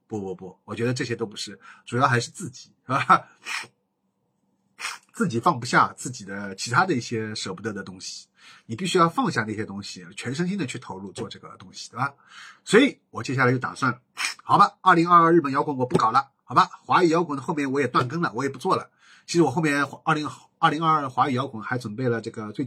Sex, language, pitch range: male, Chinese, 120-170 Hz